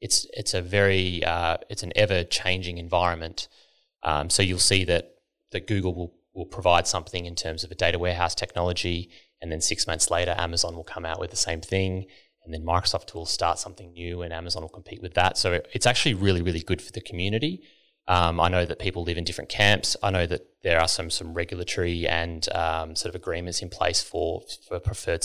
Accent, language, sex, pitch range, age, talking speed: Australian, English, male, 85-95 Hz, 20-39, 215 wpm